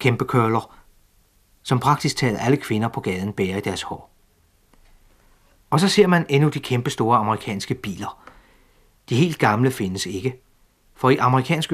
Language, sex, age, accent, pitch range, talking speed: Danish, male, 40-59, native, 105-135 Hz, 160 wpm